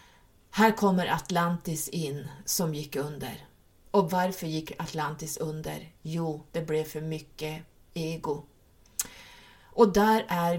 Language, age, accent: Swedish, 30-49, native